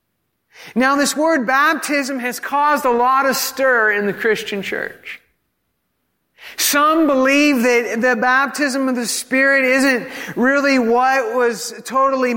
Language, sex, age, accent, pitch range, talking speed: English, male, 50-69, American, 220-275 Hz, 130 wpm